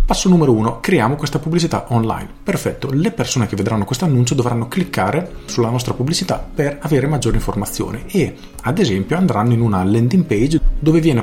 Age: 40-59